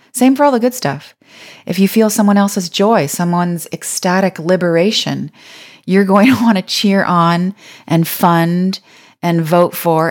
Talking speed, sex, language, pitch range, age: 160 wpm, female, English, 155-185 Hz, 30-49